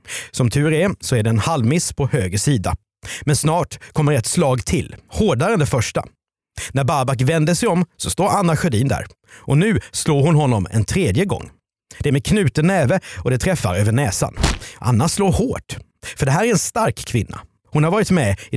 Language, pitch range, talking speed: Swedish, 110-165 Hz, 205 wpm